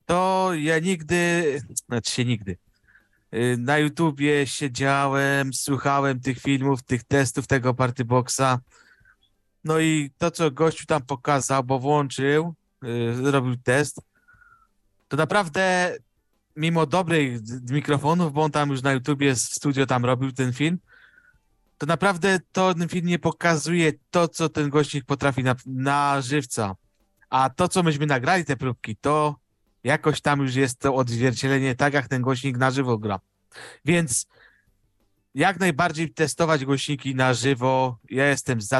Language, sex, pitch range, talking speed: Polish, male, 125-160 Hz, 145 wpm